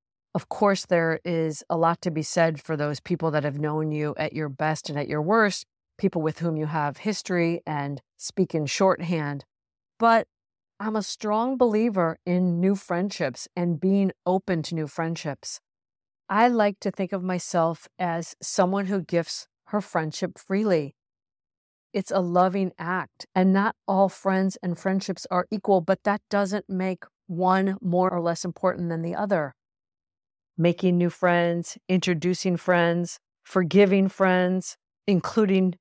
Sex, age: female, 50-69